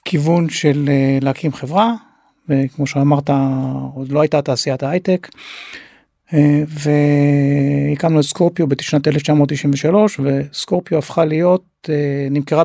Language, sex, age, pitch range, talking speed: Hebrew, male, 30-49, 145-165 Hz, 95 wpm